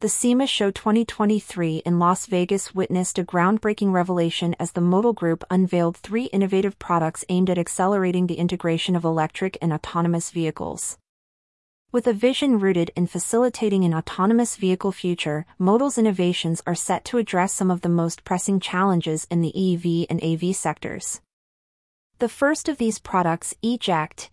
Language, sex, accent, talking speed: English, female, American, 155 wpm